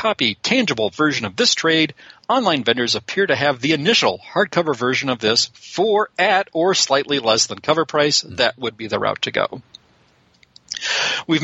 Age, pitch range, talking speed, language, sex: 40-59, 115-160 Hz, 175 wpm, English, male